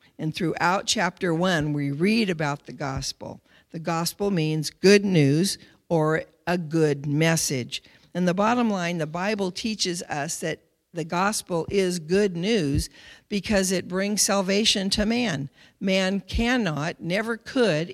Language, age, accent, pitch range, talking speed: English, 50-69, American, 165-210 Hz, 140 wpm